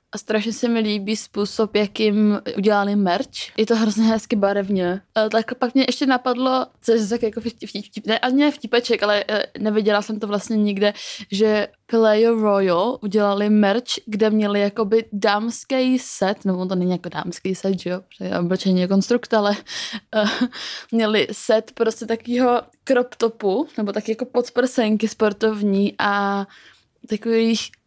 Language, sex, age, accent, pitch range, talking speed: Czech, female, 20-39, native, 210-240 Hz, 145 wpm